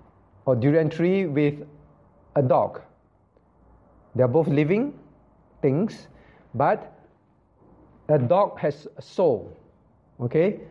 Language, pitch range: English, 120-190 Hz